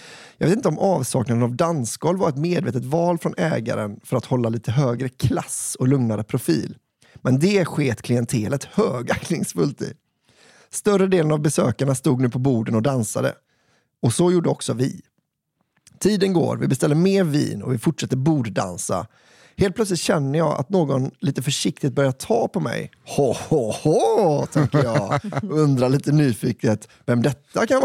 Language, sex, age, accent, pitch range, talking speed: Swedish, male, 30-49, native, 125-175 Hz, 160 wpm